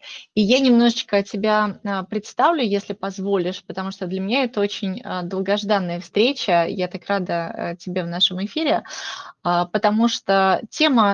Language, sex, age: Russian, female, 20-39